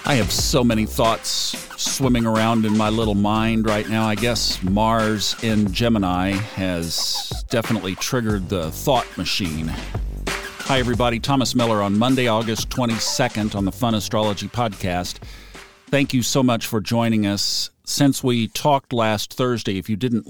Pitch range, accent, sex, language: 95-115 Hz, American, male, English